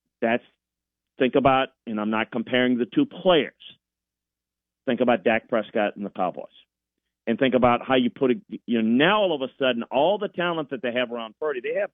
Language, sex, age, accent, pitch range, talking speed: English, male, 40-59, American, 110-140 Hz, 205 wpm